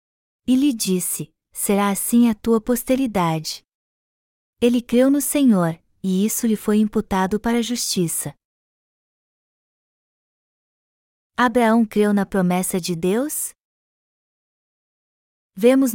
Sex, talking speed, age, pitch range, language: female, 100 wpm, 20-39, 195-235 Hz, Portuguese